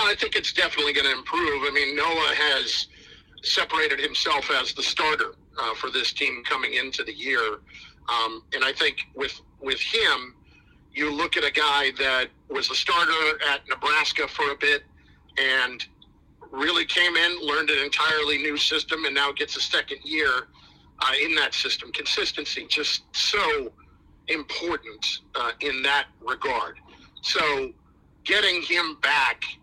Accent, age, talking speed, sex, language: American, 50-69, 155 wpm, male, English